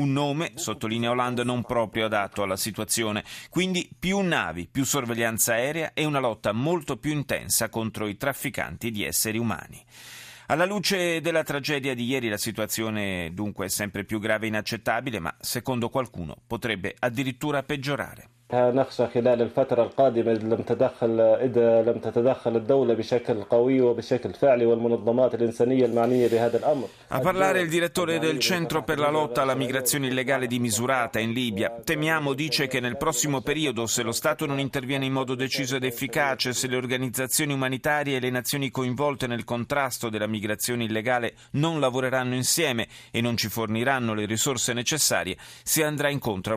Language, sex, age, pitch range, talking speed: Italian, male, 30-49, 115-140 Hz, 140 wpm